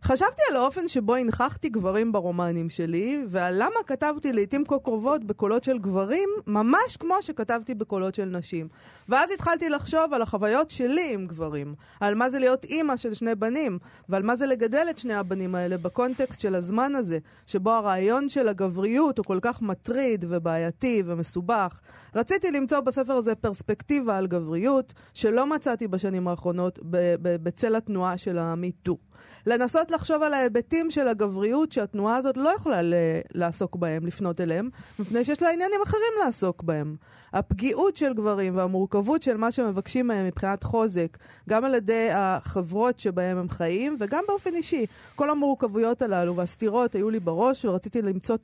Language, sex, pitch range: Hebrew, female, 185-260 Hz